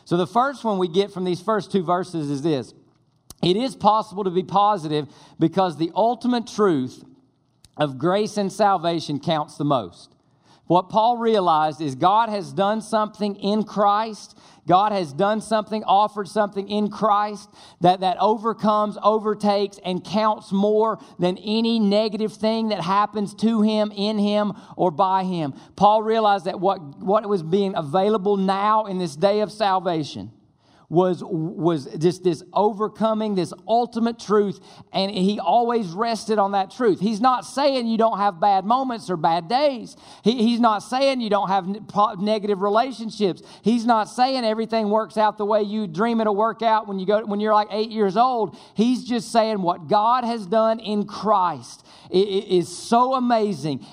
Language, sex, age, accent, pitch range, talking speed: English, male, 40-59, American, 185-220 Hz, 165 wpm